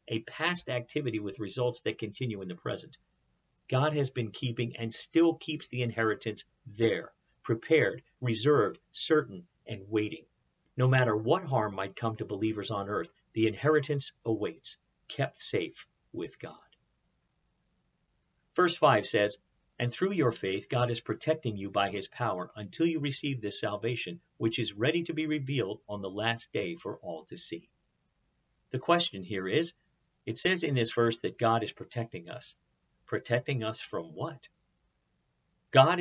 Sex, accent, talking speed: male, American, 155 wpm